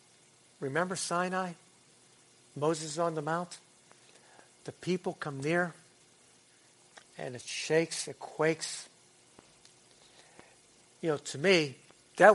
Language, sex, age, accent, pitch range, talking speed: English, male, 60-79, American, 145-185 Hz, 95 wpm